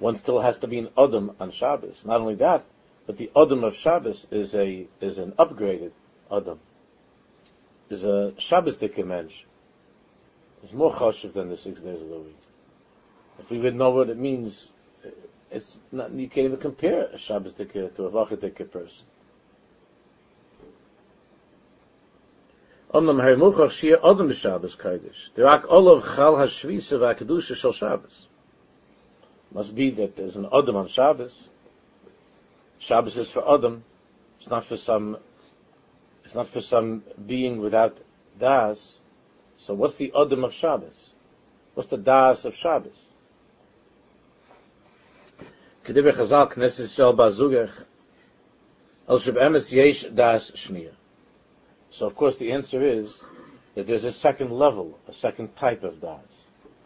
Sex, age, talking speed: male, 50-69, 120 wpm